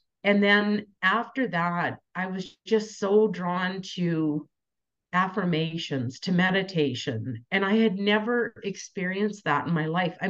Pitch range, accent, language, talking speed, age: 155-190 Hz, American, English, 135 wpm, 50-69